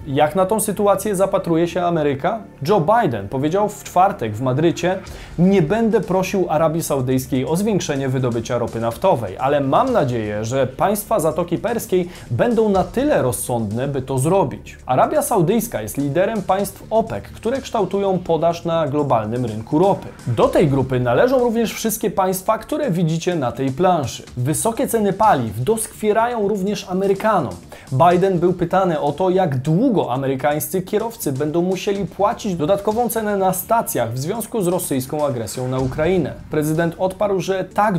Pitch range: 140-195 Hz